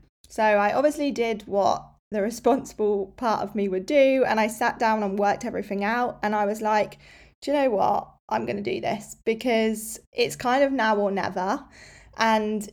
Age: 10-29